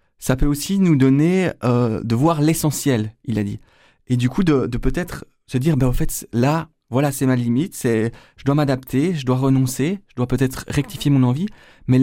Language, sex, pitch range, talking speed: French, male, 125-150 Hz, 210 wpm